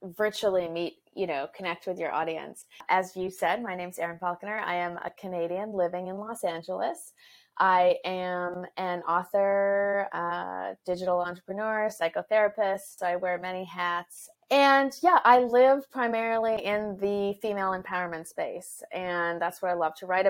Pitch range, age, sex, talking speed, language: 165-185 Hz, 20-39, female, 155 wpm, English